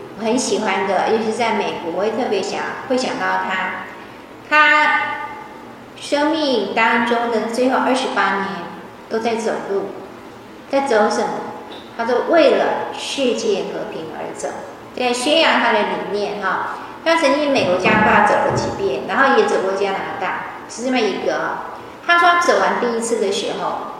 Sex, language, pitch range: female, Chinese, 210-280 Hz